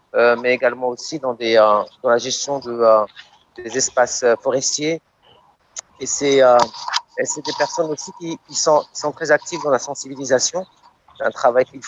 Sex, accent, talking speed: male, French, 185 wpm